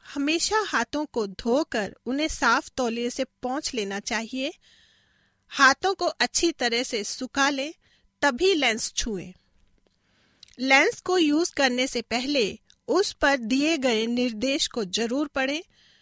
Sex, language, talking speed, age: female, Hindi, 130 wpm, 40-59